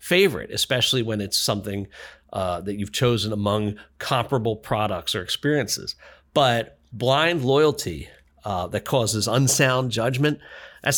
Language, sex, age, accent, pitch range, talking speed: English, male, 40-59, American, 105-140 Hz, 125 wpm